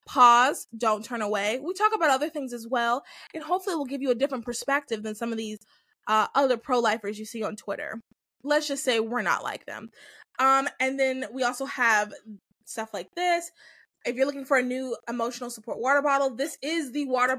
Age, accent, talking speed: 20-39, American, 210 wpm